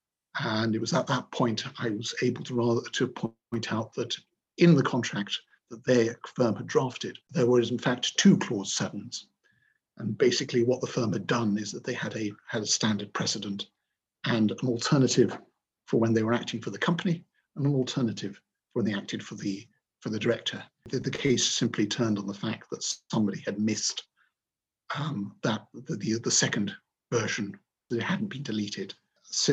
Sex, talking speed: male, 190 wpm